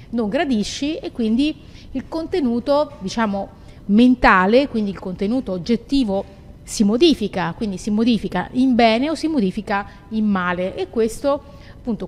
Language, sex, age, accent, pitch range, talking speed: Italian, female, 30-49, native, 215-270 Hz, 135 wpm